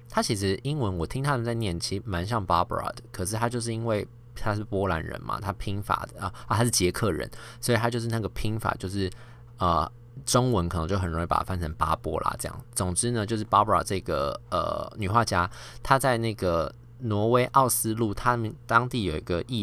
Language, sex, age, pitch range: Chinese, male, 20-39, 90-120 Hz